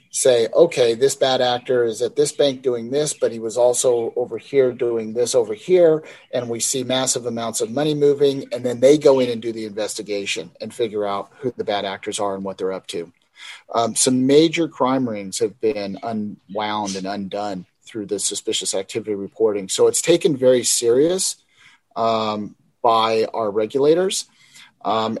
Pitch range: 115-150 Hz